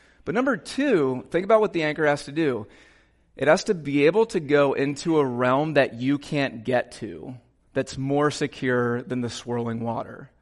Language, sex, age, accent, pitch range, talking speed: English, male, 30-49, American, 125-155 Hz, 190 wpm